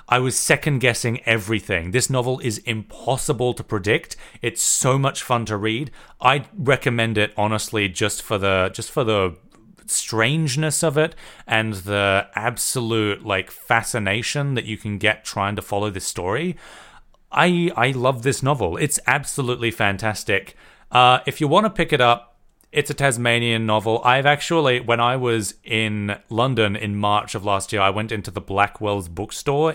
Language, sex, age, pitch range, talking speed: English, male, 30-49, 105-140 Hz, 165 wpm